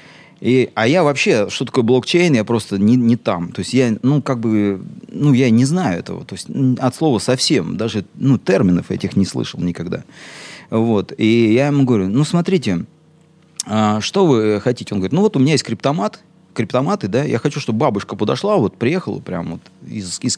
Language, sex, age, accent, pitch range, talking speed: Russian, male, 30-49, native, 105-145 Hz, 190 wpm